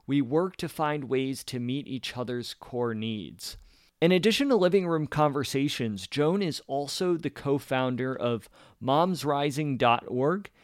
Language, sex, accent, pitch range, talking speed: English, male, American, 125-160 Hz, 135 wpm